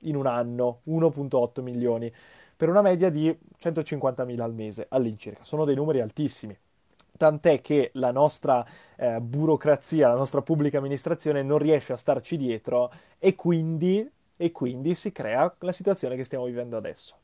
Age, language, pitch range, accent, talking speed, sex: 20-39, Italian, 130-165 Hz, native, 155 wpm, male